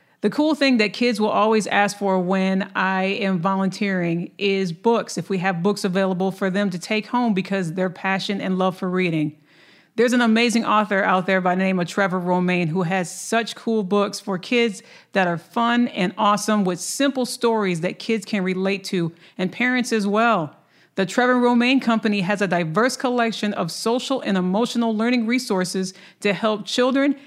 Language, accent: English, American